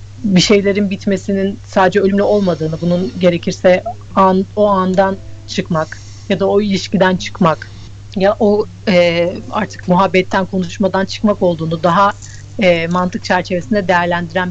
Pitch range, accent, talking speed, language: 170-200 Hz, native, 125 wpm, Turkish